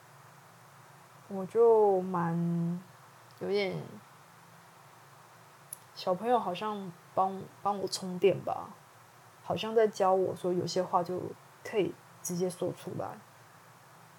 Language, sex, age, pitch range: Chinese, female, 20-39, 165-210 Hz